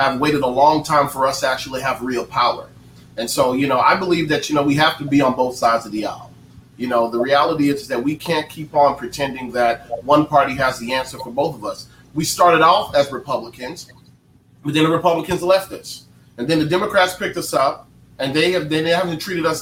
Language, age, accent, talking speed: English, 30-49, American, 240 wpm